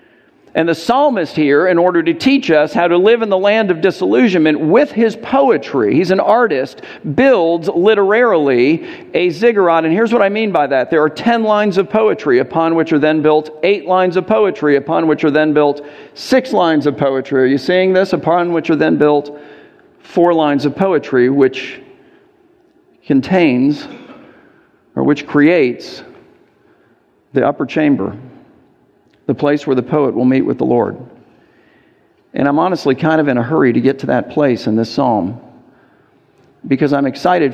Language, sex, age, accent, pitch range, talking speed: English, male, 50-69, American, 140-230 Hz, 175 wpm